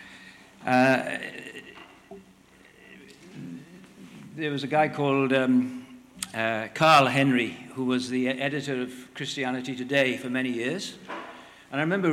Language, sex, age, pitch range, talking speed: English, male, 60-79, 130-155 Hz, 115 wpm